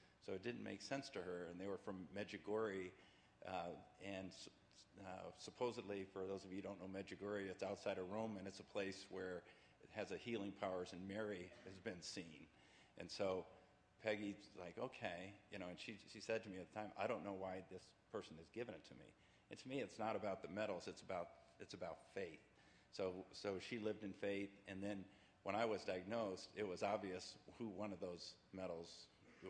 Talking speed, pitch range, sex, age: 210 wpm, 95-105 Hz, male, 50-69